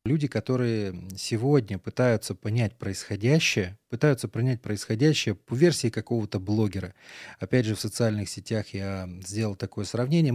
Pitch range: 105-130 Hz